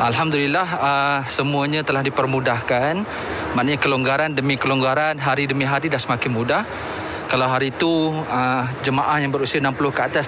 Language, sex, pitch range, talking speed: Malay, male, 130-150 Hz, 145 wpm